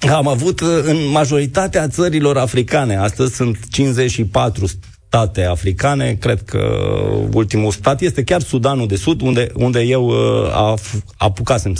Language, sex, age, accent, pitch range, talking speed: Romanian, male, 30-49, native, 110-160 Hz, 120 wpm